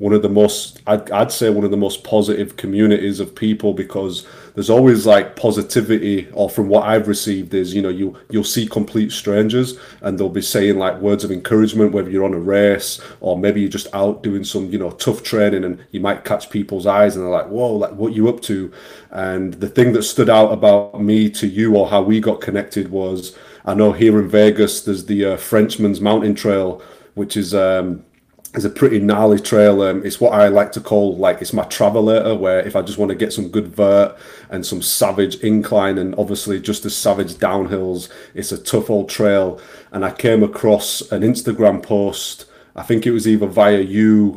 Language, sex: English, male